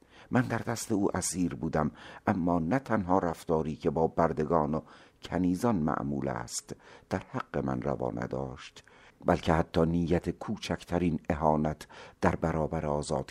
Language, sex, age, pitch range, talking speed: Persian, male, 60-79, 70-90 Hz, 135 wpm